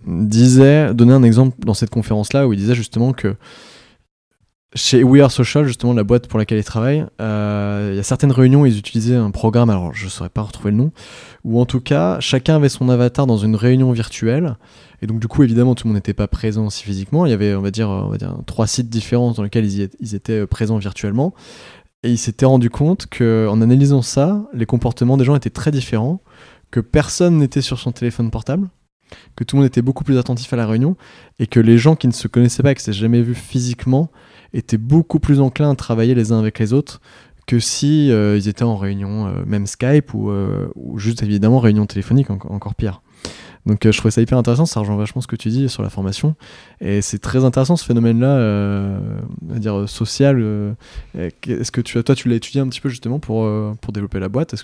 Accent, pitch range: French, 110-130 Hz